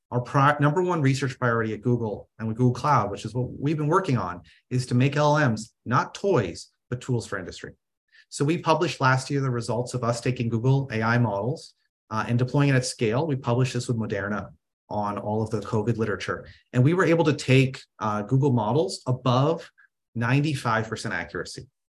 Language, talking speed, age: English, 190 wpm, 30-49